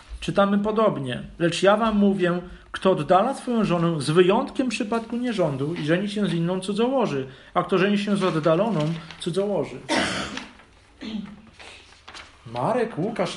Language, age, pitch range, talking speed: Polish, 40-59, 125-185 Hz, 130 wpm